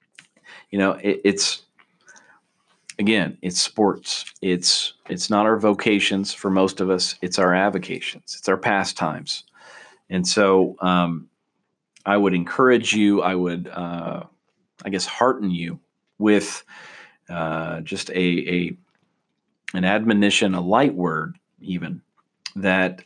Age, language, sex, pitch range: 40-59, English, male, 90-105 Hz